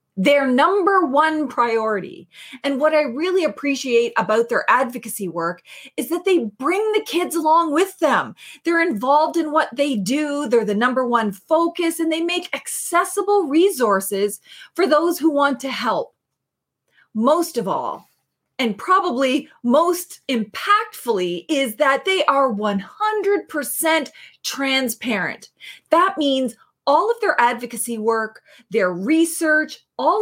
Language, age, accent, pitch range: English, 30-49, American, 240-340 Hz